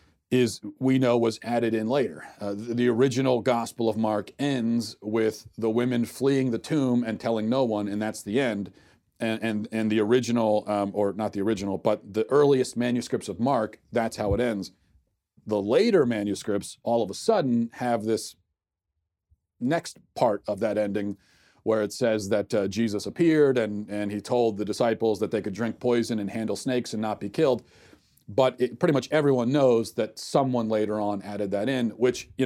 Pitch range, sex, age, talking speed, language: 105-135 Hz, male, 40-59, 190 wpm, English